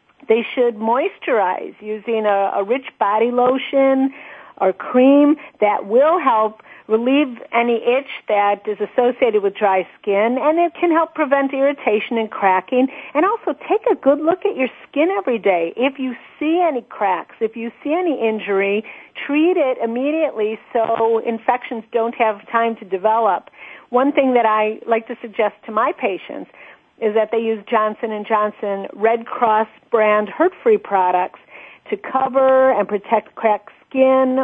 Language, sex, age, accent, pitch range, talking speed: English, female, 50-69, American, 215-270 Hz, 160 wpm